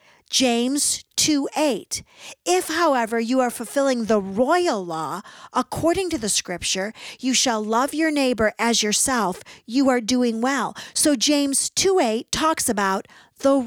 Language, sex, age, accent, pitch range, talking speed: English, female, 50-69, American, 205-285 Hz, 135 wpm